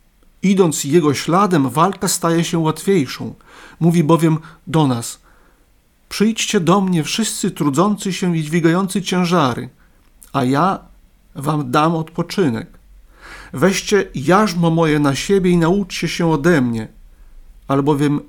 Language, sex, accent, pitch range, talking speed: Polish, male, native, 145-180 Hz, 120 wpm